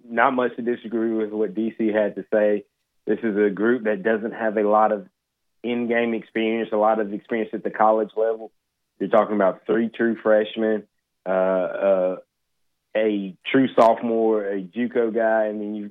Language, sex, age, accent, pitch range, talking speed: English, male, 20-39, American, 100-115 Hz, 175 wpm